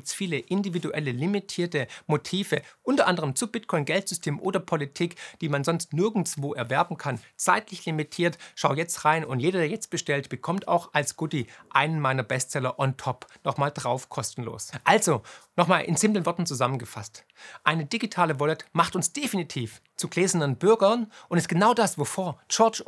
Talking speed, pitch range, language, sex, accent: 155 wpm, 145-195 Hz, German, male, German